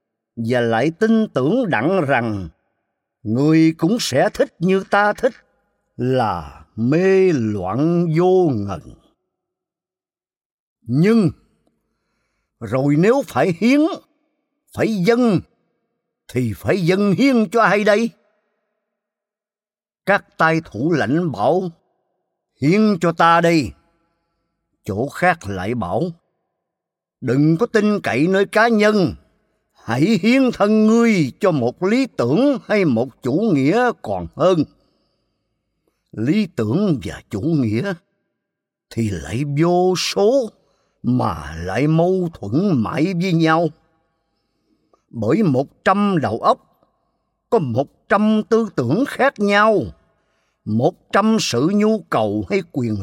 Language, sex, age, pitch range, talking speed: Vietnamese, male, 50-69, 130-215 Hz, 115 wpm